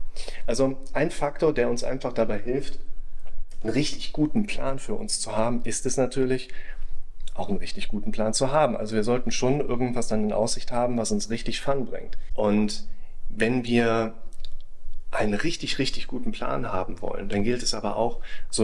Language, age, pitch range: German, 30-49, 105-130 Hz